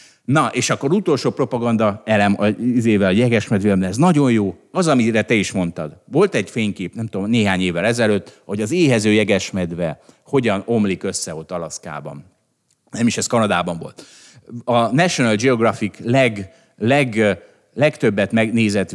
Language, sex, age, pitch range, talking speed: Hungarian, male, 30-49, 95-130 Hz, 150 wpm